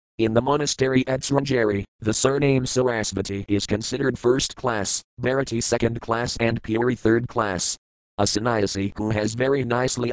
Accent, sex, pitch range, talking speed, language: American, male, 100-120 Hz, 150 wpm, English